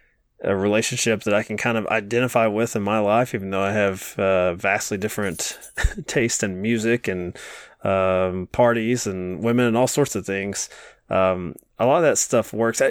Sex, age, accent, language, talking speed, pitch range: male, 20-39, American, English, 180 wpm, 95-115 Hz